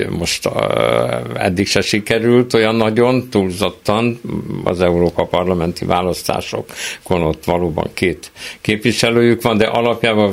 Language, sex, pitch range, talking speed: Hungarian, male, 90-110 Hz, 100 wpm